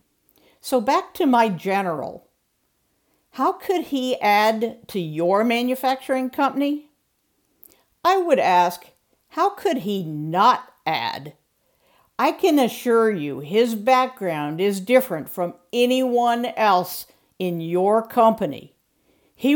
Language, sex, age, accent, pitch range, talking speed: English, female, 50-69, American, 195-255 Hz, 110 wpm